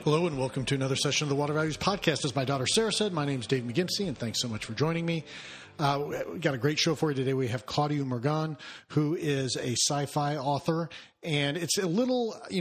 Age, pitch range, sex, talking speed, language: 40-59, 125-155 Hz, male, 245 wpm, English